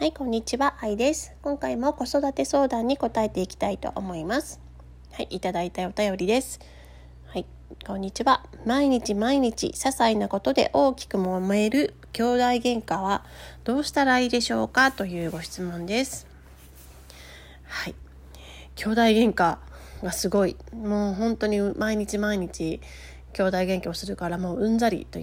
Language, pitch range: Japanese, 155-225 Hz